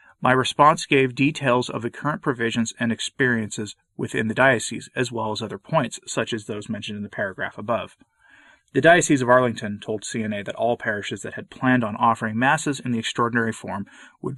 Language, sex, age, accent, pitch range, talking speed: English, male, 30-49, American, 110-135 Hz, 190 wpm